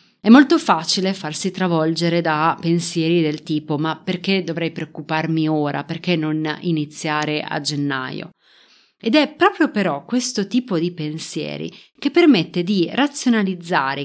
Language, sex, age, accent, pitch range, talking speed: Italian, female, 30-49, native, 160-210 Hz, 130 wpm